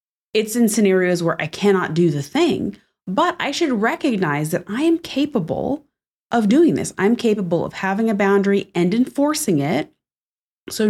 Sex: female